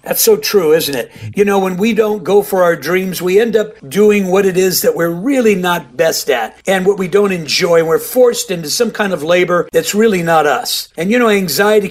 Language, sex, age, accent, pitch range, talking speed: English, male, 50-69, American, 175-220 Hz, 235 wpm